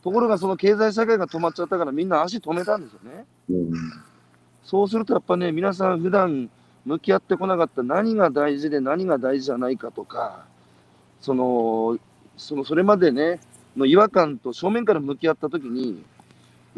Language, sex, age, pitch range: Japanese, male, 40-59, 130-185 Hz